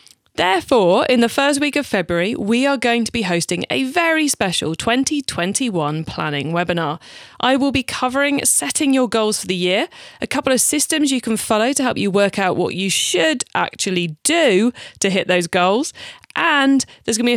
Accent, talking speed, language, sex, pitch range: British, 185 wpm, English, female, 180-265 Hz